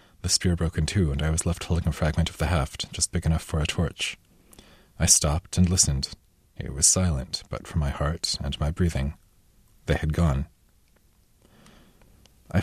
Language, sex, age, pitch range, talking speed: English, male, 30-49, 75-90 Hz, 185 wpm